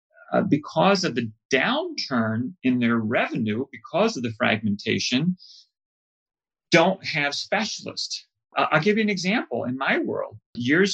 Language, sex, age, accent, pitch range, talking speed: English, male, 40-59, American, 115-160 Hz, 135 wpm